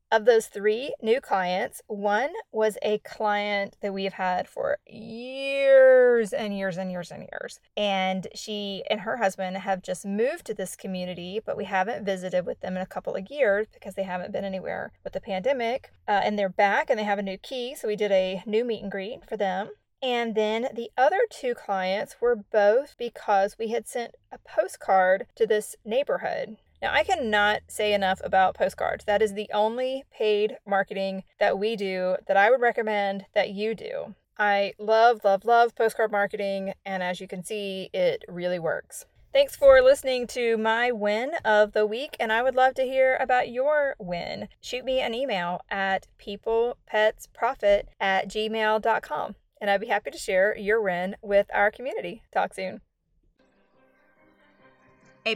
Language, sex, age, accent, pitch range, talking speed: English, female, 30-49, American, 195-250 Hz, 180 wpm